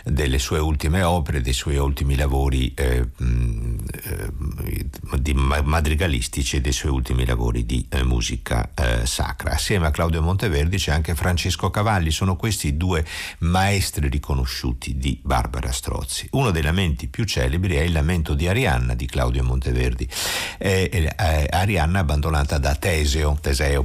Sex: male